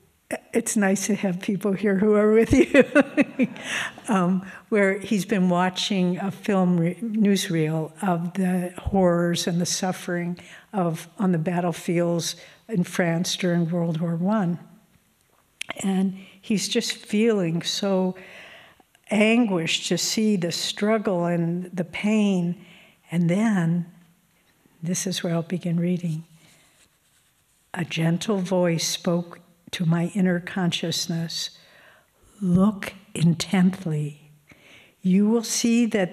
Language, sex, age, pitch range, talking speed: English, female, 60-79, 175-205 Hz, 115 wpm